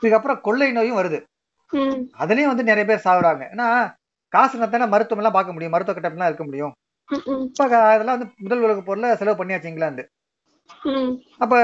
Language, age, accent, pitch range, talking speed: Tamil, 30-49, native, 175-240 Hz, 80 wpm